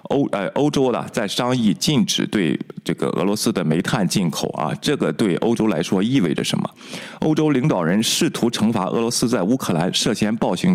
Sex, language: male, Chinese